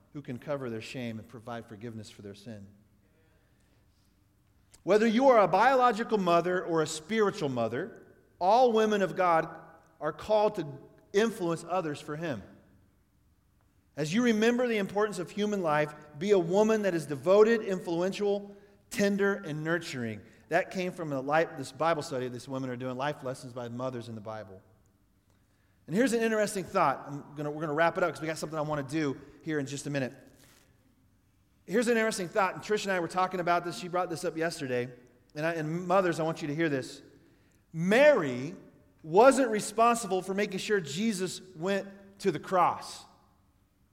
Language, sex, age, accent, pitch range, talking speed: English, male, 40-59, American, 125-195 Hz, 180 wpm